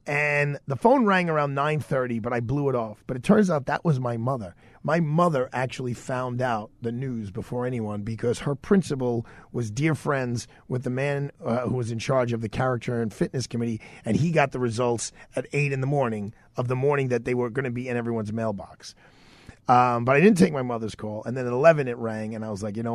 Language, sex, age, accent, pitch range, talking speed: English, male, 40-59, American, 115-145 Hz, 235 wpm